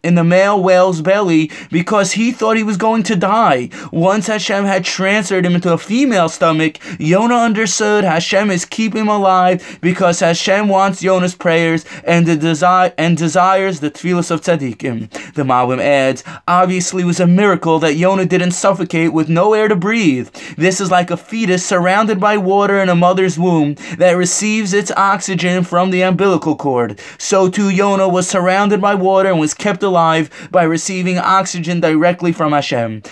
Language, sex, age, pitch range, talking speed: English, male, 20-39, 170-205 Hz, 175 wpm